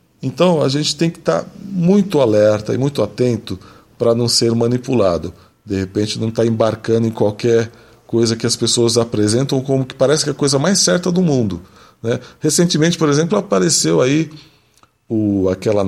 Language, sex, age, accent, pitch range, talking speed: Portuguese, male, 40-59, Brazilian, 110-155 Hz, 180 wpm